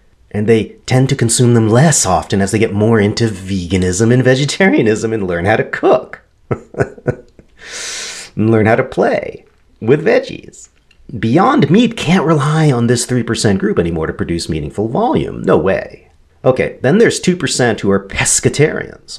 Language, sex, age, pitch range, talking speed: English, male, 40-59, 90-135 Hz, 155 wpm